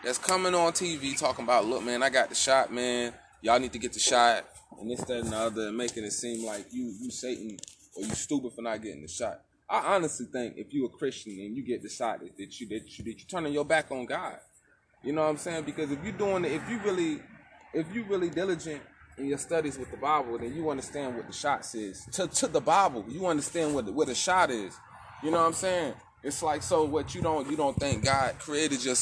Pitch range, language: 130-175 Hz, English